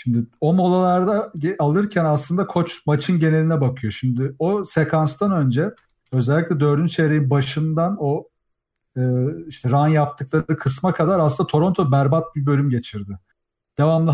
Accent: native